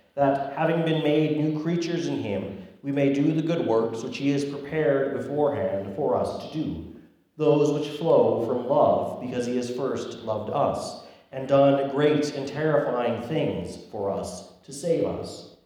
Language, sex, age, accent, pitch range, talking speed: English, male, 40-59, American, 120-145 Hz, 175 wpm